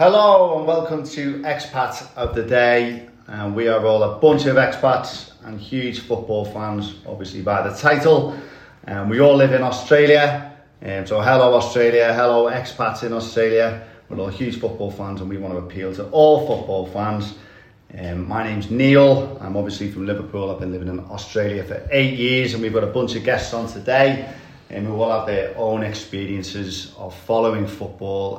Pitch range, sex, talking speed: 100-135 Hz, male, 190 wpm